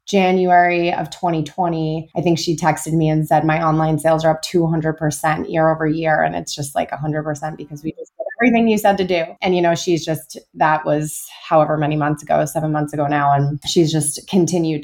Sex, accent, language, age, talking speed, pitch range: female, American, English, 20-39, 210 wpm, 155-180 Hz